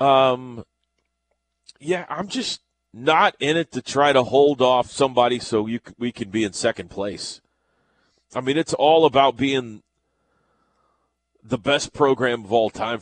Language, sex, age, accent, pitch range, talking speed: English, male, 30-49, American, 90-130 Hz, 150 wpm